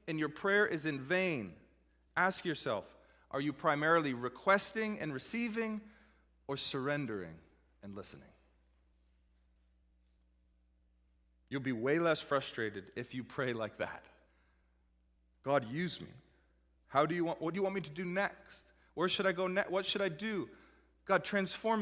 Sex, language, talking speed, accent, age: male, English, 150 wpm, American, 30-49